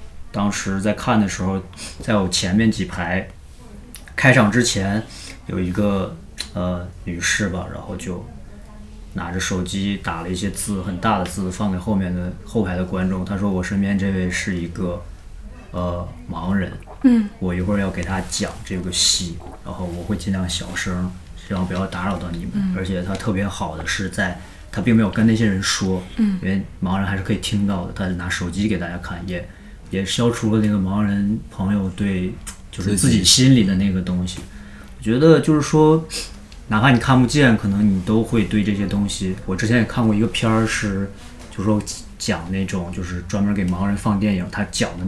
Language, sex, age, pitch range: Chinese, male, 20-39, 90-110 Hz